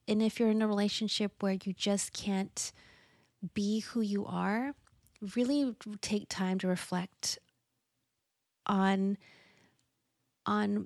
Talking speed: 115 wpm